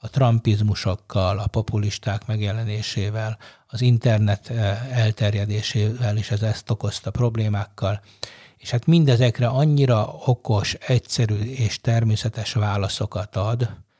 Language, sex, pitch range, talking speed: Hungarian, male, 105-120 Hz, 100 wpm